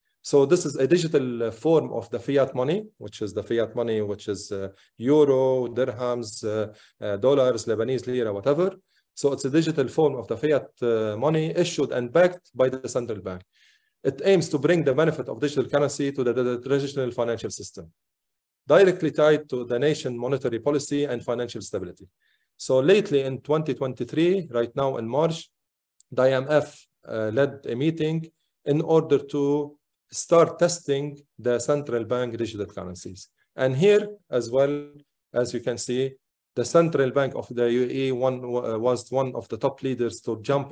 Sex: male